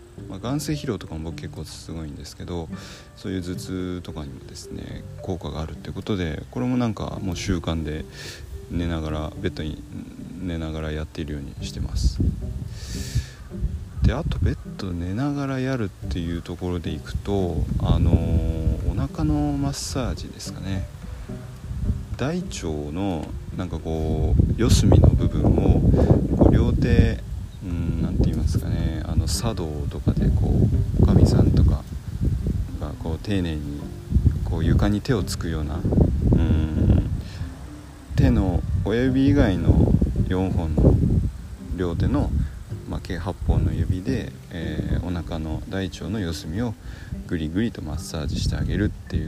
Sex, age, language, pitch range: male, 40-59, Japanese, 80-100 Hz